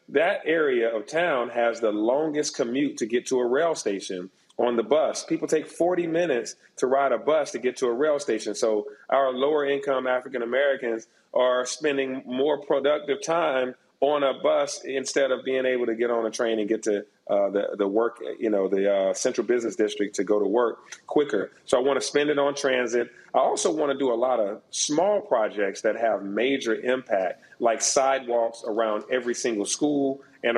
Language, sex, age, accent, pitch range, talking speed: English, male, 40-59, American, 105-130 Hz, 200 wpm